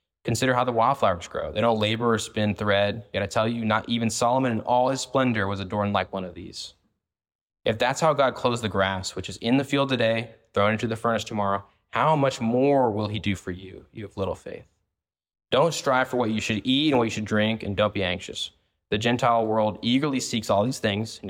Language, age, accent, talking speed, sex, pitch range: English, 20-39, American, 235 wpm, male, 100-120 Hz